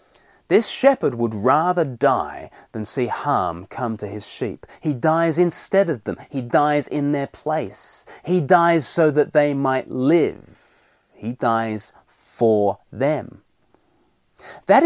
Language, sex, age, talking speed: English, male, 30-49, 135 wpm